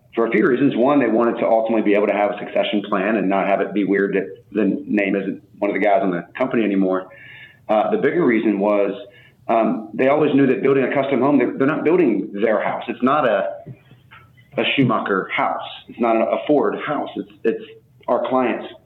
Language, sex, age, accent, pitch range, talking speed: English, male, 30-49, American, 100-120 Hz, 220 wpm